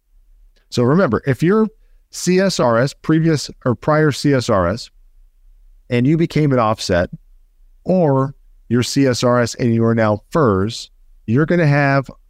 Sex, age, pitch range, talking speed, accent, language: male, 40-59, 100-140 Hz, 125 wpm, American, English